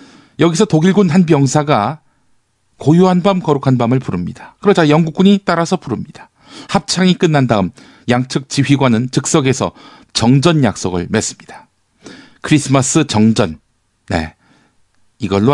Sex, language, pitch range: male, Korean, 105-150 Hz